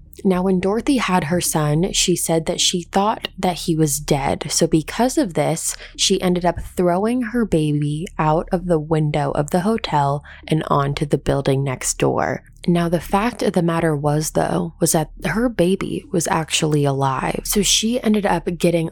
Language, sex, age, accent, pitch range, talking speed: English, female, 20-39, American, 155-190 Hz, 185 wpm